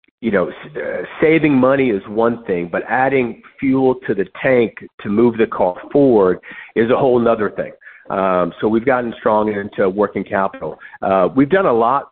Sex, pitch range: male, 95-120 Hz